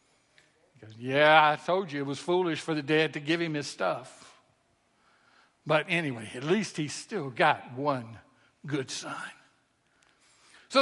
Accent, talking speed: American, 145 wpm